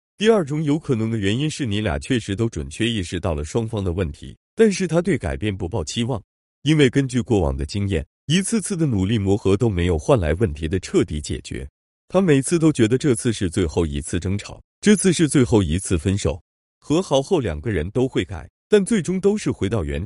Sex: male